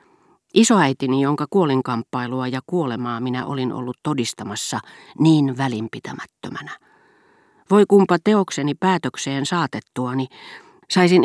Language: Finnish